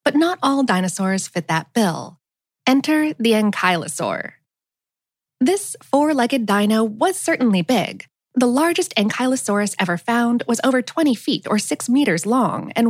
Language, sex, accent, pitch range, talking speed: English, female, American, 195-275 Hz, 140 wpm